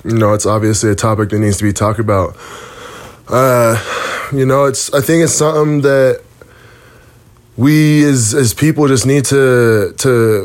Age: 20-39